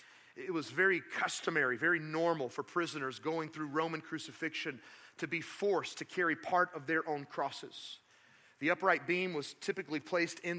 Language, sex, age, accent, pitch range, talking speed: English, male, 30-49, American, 155-190 Hz, 165 wpm